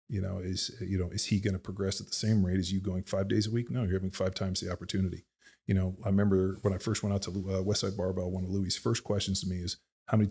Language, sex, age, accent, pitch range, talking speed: English, male, 30-49, American, 95-105 Hz, 295 wpm